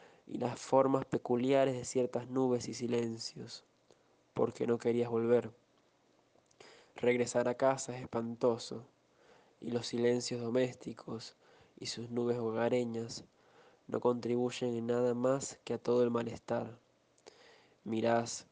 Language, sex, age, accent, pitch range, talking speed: Spanish, male, 20-39, Argentinian, 115-125 Hz, 120 wpm